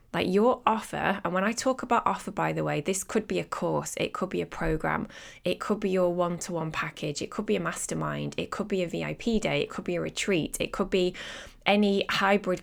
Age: 20-39